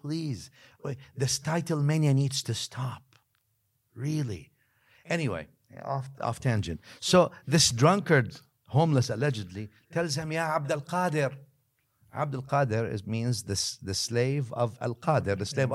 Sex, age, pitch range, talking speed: male, 50-69, 110-145 Hz, 135 wpm